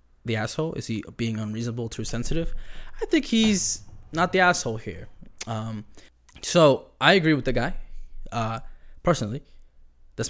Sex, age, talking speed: male, 10-29, 145 wpm